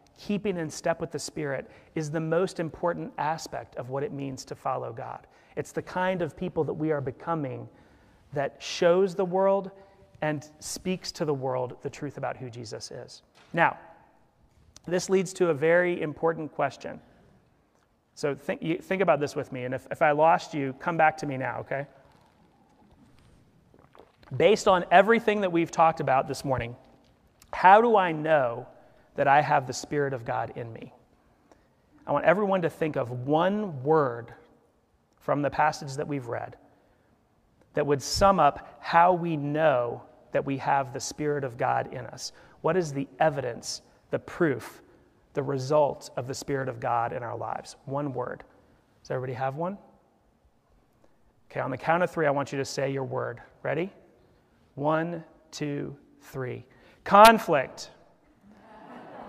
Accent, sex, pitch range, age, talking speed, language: American, male, 135-170 Hz, 30-49, 165 wpm, English